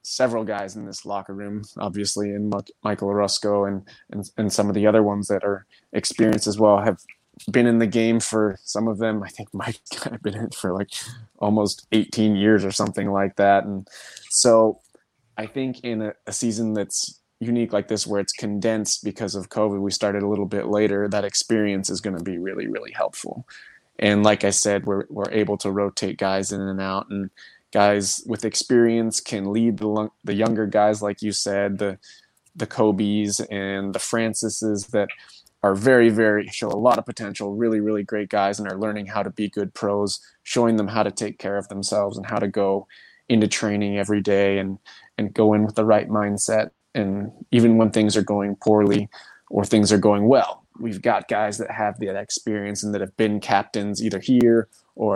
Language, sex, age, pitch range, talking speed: English, male, 20-39, 100-110 Hz, 200 wpm